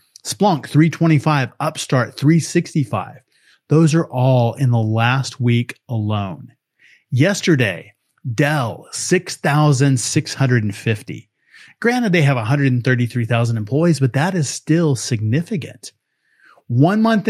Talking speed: 95 wpm